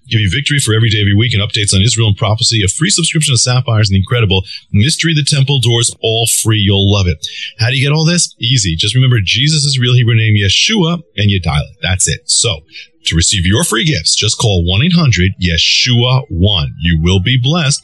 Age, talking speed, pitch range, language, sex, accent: 40-59, 225 wpm, 95-135 Hz, English, male, American